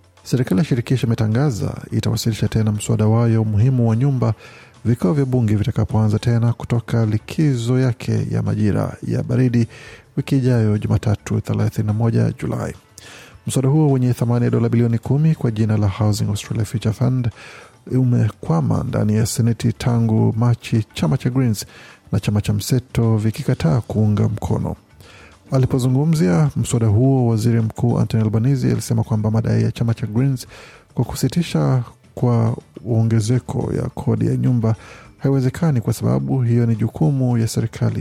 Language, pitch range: Swahili, 110-130 Hz